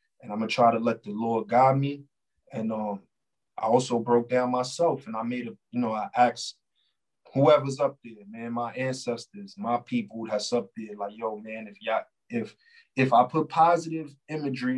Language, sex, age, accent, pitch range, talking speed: English, male, 20-39, American, 110-130 Hz, 190 wpm